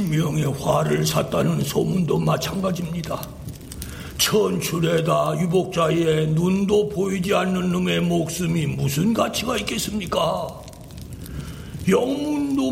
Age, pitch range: 60-79, 165-230 Hz